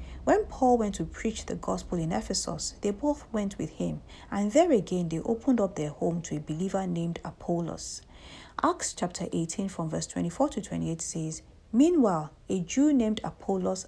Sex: female